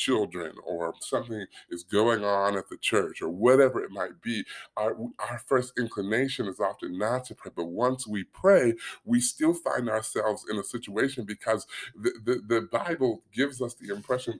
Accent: American